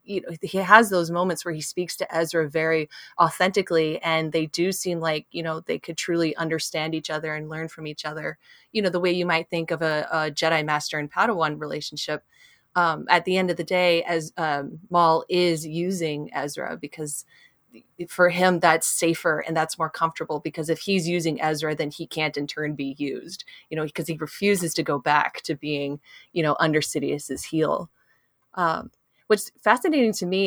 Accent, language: American, English